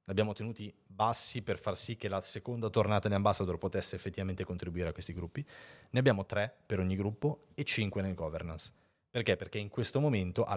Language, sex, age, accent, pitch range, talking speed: Italian, male, 30-49, native, 90-115 Hz, 195 wpm